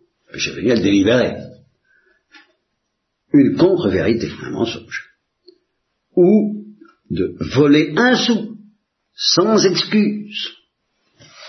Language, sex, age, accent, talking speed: Italian, male, 60-79, French, 85 wpm